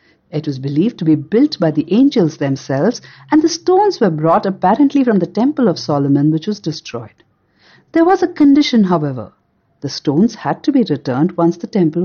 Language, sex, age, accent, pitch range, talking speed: Hindi, female, 60-79, native, 155-230 Hz, 190 wpm